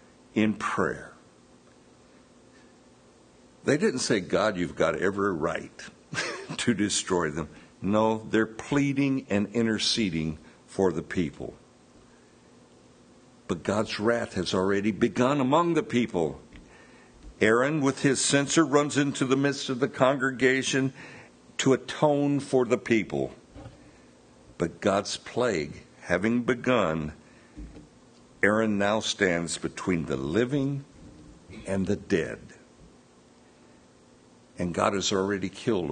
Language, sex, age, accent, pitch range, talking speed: English, male, 60-79, American, 95-135 Hz, 110 wpm